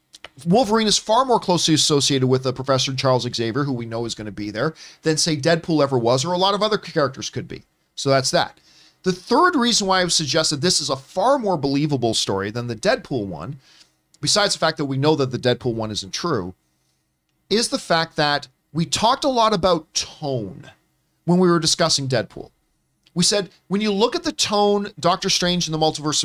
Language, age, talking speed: English, 40-59, 210 wpm